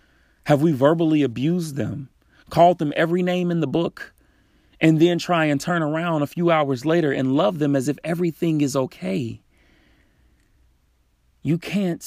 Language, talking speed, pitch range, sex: English, 160 wpm, 130-175 Hz, male